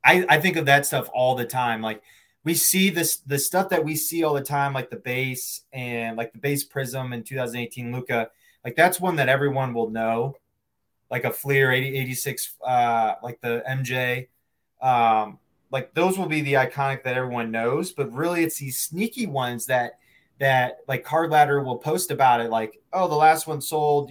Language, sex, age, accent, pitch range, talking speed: English, male, 20-39, American, 125-150 Hz, 200 wpm